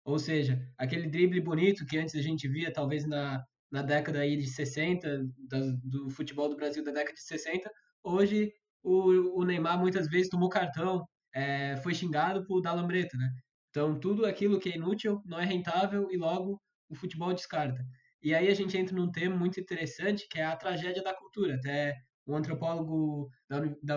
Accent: Brazilian